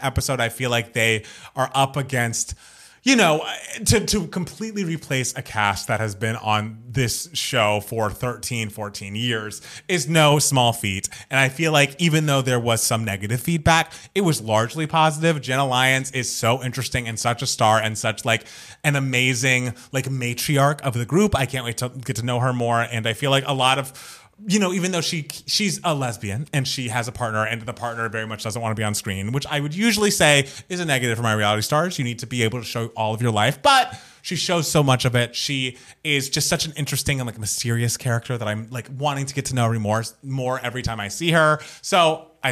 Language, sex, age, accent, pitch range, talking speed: English, male, 30-49, American, 115-150 Hz, 225 wpm